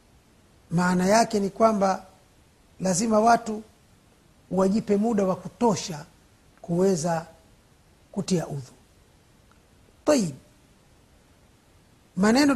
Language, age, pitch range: Swahili, 50-69, 165-220 Hz